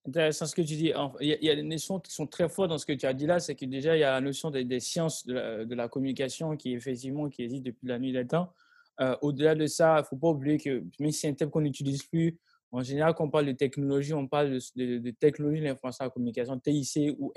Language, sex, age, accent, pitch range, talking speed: English, male, 20-39, French, 135-180 Hz, 295 wpm